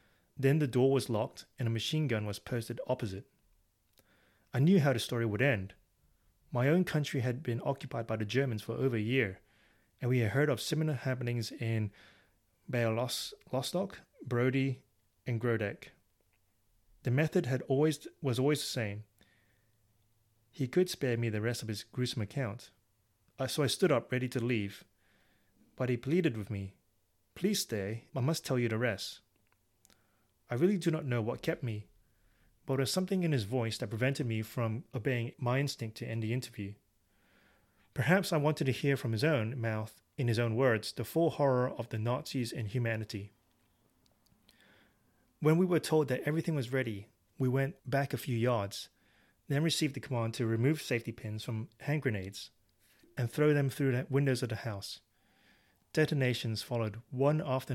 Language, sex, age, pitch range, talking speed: English, male, 30-49, 105-135 Hz, 175 wpm